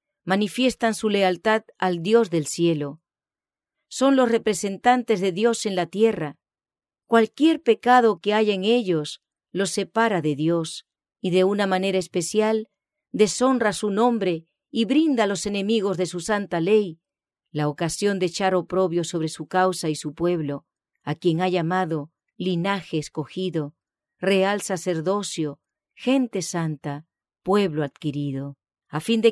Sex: female